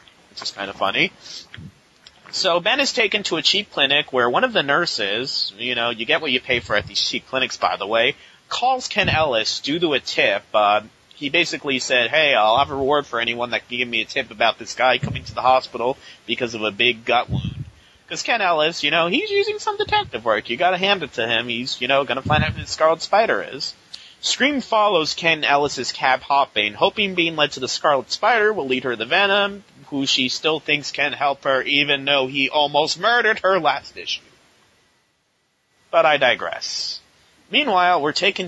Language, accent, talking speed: English, American, 215 wpm